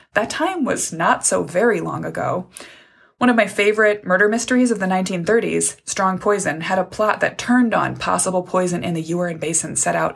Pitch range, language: 180-235 Hz, English